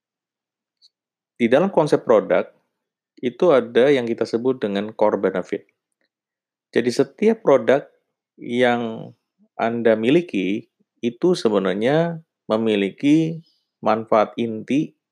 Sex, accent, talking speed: male, native, 90 wpm